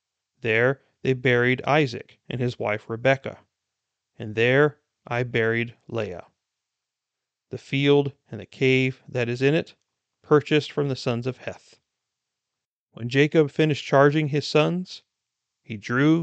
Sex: male